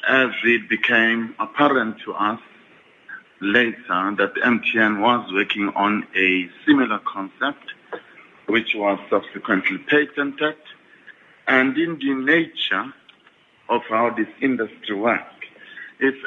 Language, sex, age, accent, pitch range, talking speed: English, male, 50-69, French, 105-130 Hz, 105 wpm